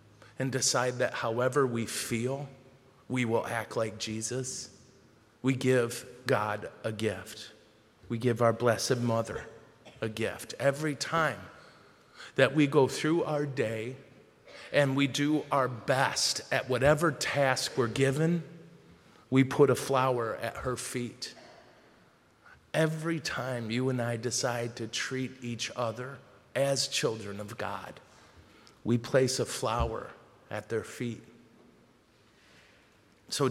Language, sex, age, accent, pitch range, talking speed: English, male, 40-59, American, 115-140 Hz, 125 wpm